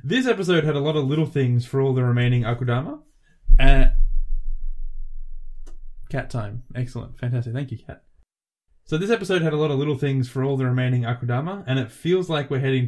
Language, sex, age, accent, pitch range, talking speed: English, male, 20-39, Australian, 115-145 Hz, 190 wpm